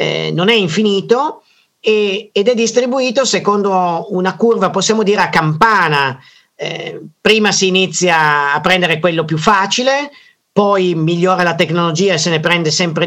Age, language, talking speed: 40-59, Italian, 140 wpm